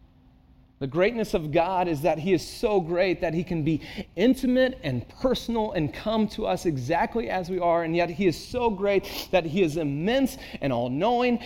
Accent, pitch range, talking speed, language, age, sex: American, 145-220 Hz, 195 wpm, English, 30-49, male